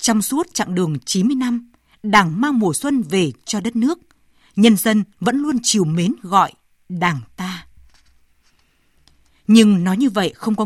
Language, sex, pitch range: Vietnamese, female, 180-250 Hz